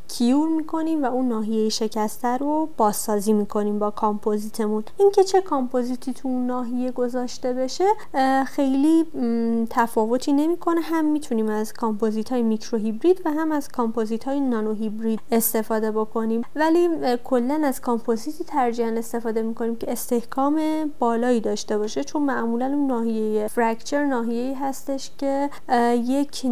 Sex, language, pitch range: female, Persian, 225-285 Hz